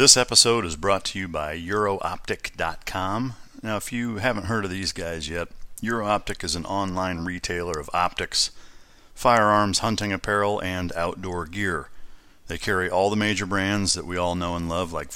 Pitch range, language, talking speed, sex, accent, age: 85-100 Hz, English, 170 wpm, male, American, 40-59